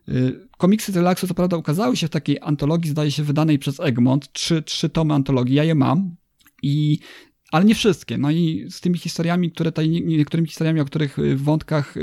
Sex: male